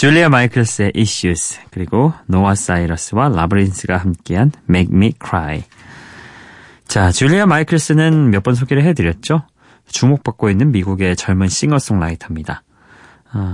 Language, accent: Korean, native